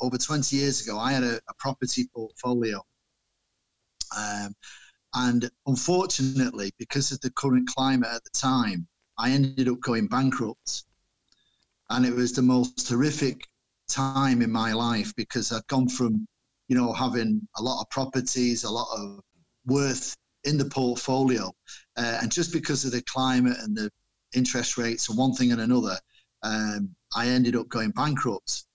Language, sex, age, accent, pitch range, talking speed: Finnish, male, 40-59, British, 115-135 Hz, 160 wpm